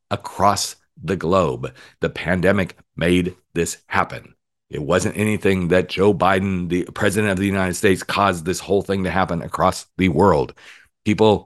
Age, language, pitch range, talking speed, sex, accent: 40-59, English, 80-105 Hz, 155 wpm, male, American